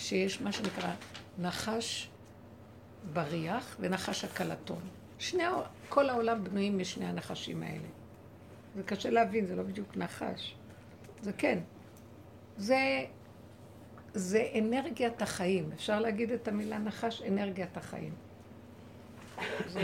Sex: female